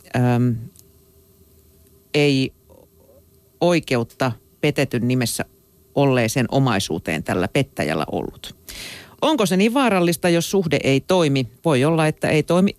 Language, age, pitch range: Finnish, 50-69, 120-160 Hz